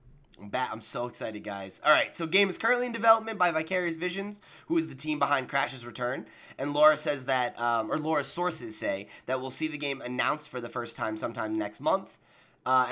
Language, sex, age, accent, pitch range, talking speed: English, male, 20-39, American, 110-145 Hz, 215 wpm